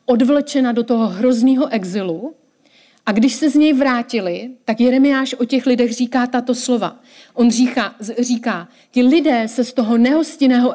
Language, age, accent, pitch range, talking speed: Czech, 40-59, native, 225-265 Hz, 155 wpm